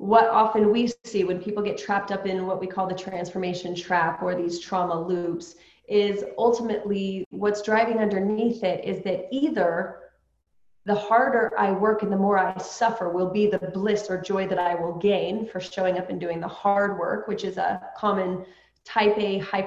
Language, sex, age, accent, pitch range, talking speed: English, female, 20-39, American, 185-210 Hz, 190 wpm